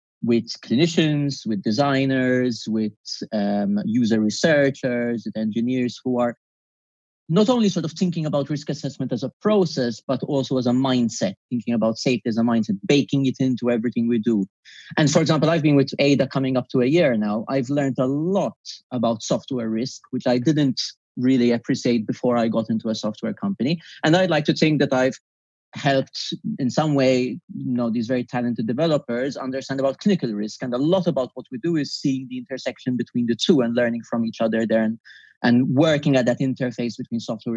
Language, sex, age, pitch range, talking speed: English, male, 30-49, 115-145 Hz, 195 wpm